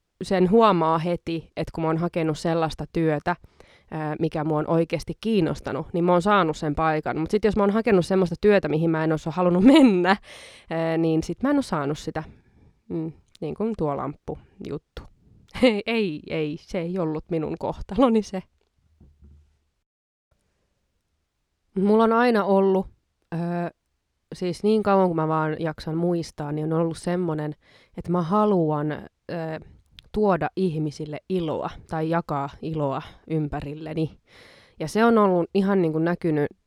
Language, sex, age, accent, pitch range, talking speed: Finnish, female, 20-39, native, 150-180 Hz, 150 wpm